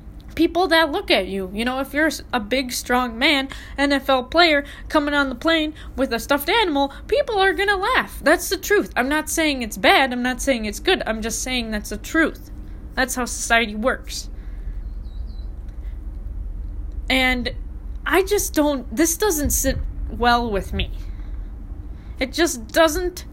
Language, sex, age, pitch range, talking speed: English, female, 20-39, 210-290 Hz, 165 wpm